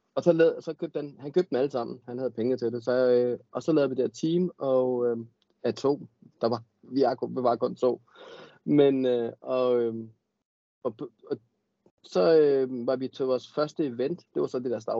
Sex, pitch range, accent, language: male, 120-145 Hz, native, Danish